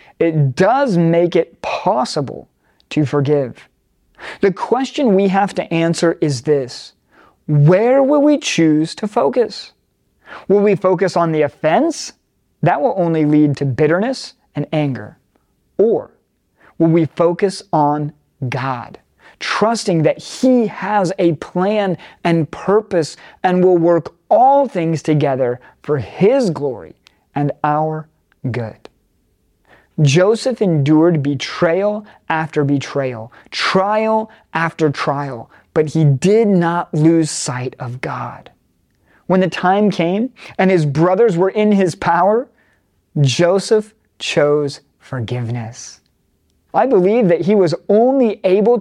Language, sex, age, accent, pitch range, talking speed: English, male, 40-59, American, 145-200 Hz, 120 wpm